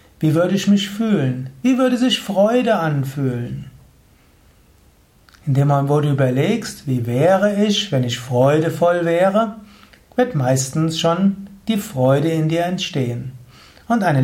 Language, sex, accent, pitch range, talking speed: German, male, German, 135-195 Hz, 135 wpm